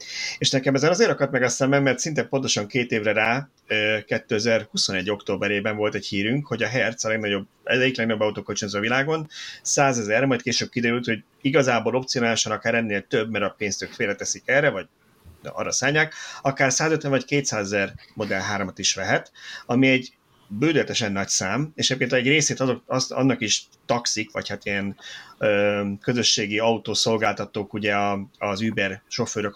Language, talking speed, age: Hungarian, 160 wpm, 30-49